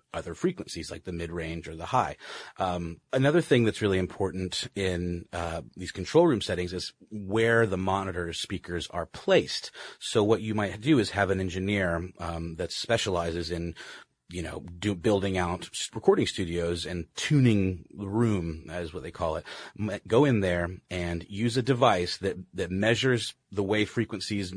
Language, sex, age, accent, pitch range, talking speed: English, male, 30-49, American, 85-105 Hz, 170 wpm